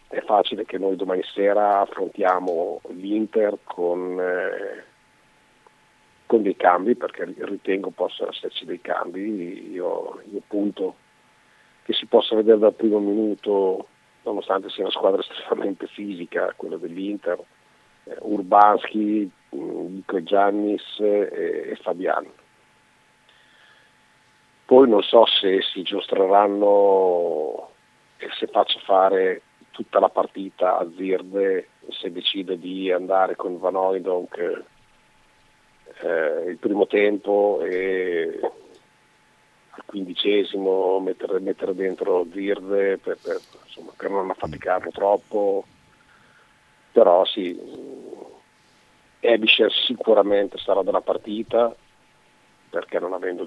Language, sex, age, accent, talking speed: Italian, male, 50-69, native, 100 wpm